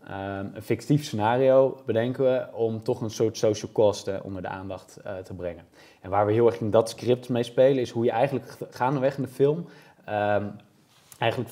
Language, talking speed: Dutch, 190 wpm